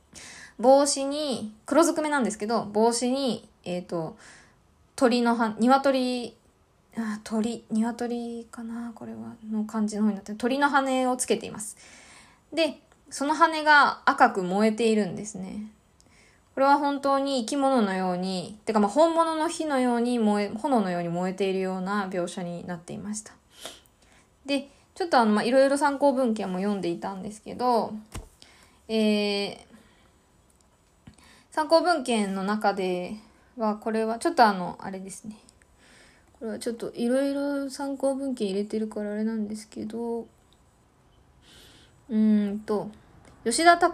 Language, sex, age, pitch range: Japanese, female, 20-39, 205-270 Hz